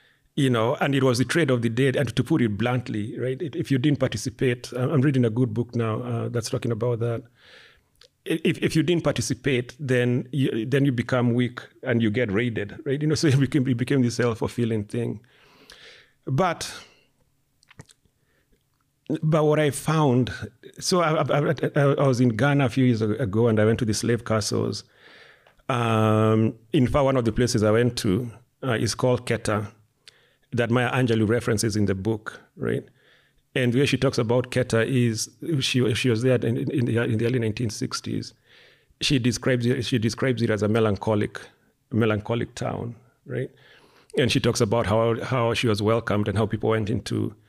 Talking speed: 185 wpm